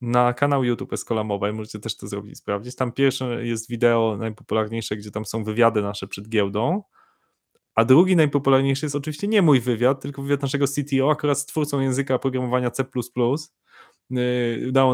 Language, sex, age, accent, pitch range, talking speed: Polish, male, 20-39, native, 115-140 Hz, 165 wpm